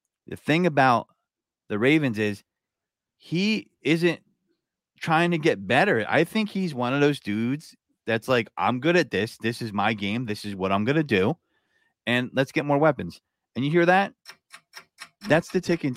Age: 30-49